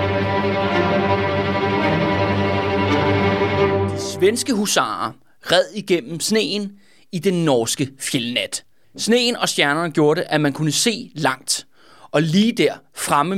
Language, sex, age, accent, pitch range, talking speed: Danish, male, 30-49, native, 140-195 Hz, 110 wpm